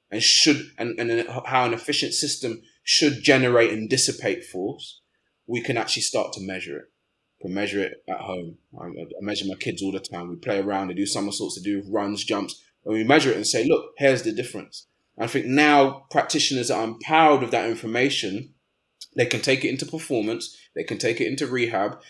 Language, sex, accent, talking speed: English, male, British, 200 wpm